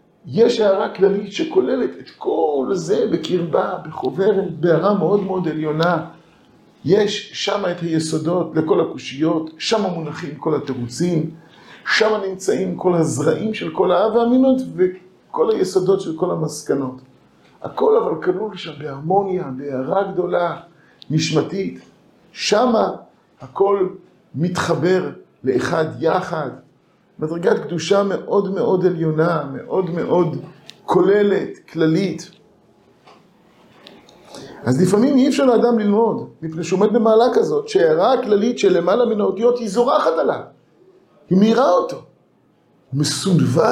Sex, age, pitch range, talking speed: male, 50-69, 165-220 Hz, 115 wpm